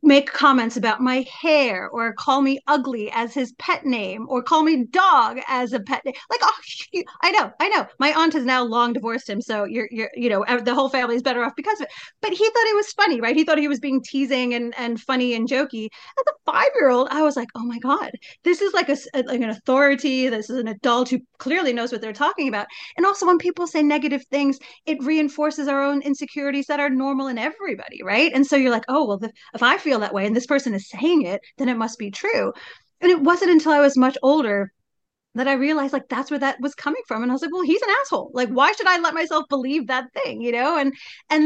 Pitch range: 240-305 Hz